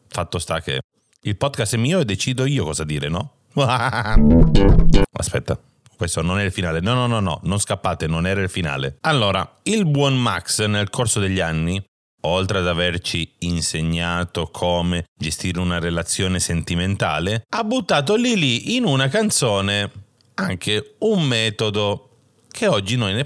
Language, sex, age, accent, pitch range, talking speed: Italian, male, 30-49, native, 90-140 Hz, 155 wpm